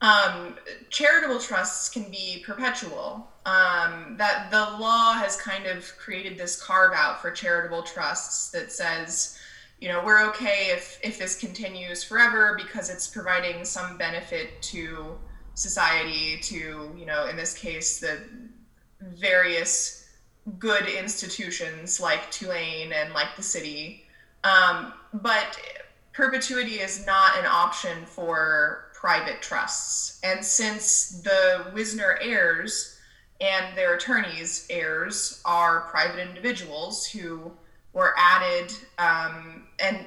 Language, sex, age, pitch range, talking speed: English, female, 20-39, 170-220 Hz, 120 wpm